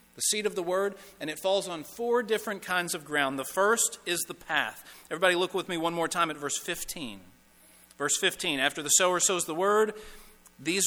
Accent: American